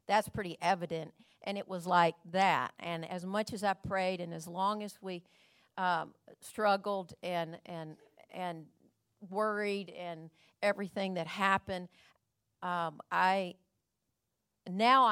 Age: 50-69